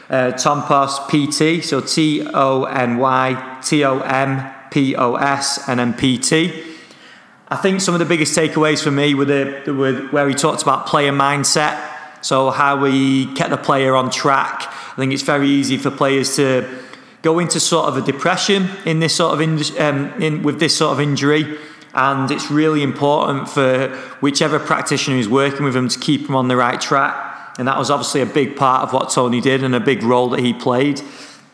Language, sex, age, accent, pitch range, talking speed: English, male, 30-49, British, 130-150 Hz, 200 wpm